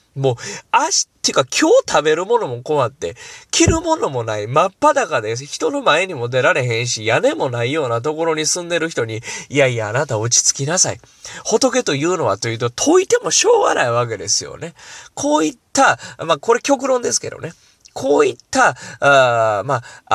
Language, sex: Japanese, male